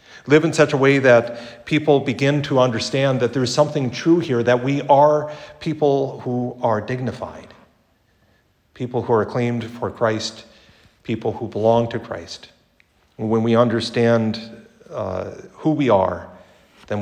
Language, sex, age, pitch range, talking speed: English, male, 50-69, 100-125 Hz, 150 wpm